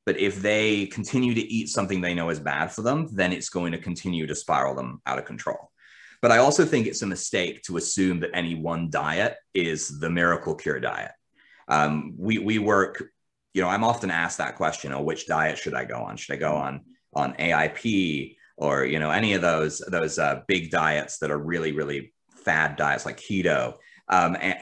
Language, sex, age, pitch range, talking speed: English, male, 30-49, 85-115 Hz, 210 wpm